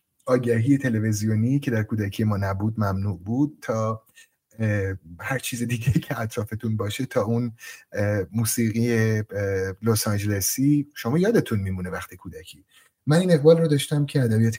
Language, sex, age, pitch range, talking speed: Persian, male, 30-49, 100-130 Hz, 135 wpm